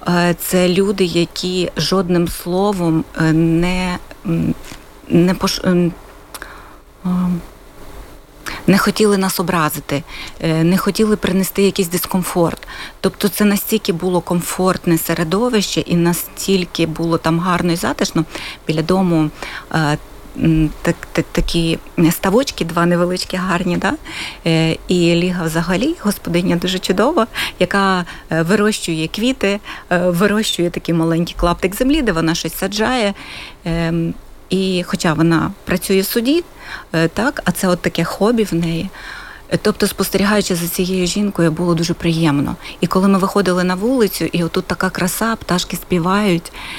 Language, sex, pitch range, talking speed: Ukrainian, female, 170-195 Hz, 120 wpm